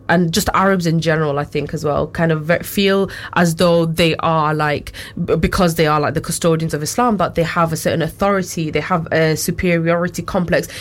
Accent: British